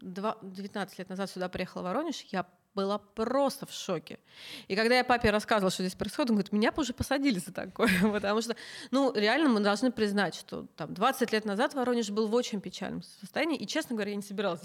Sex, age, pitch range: female, 30-49, 195-245 Hz